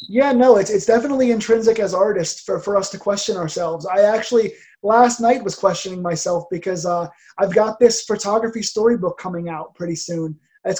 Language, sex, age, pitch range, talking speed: English, male, 20-39, 180-225 Hz, 185 wpm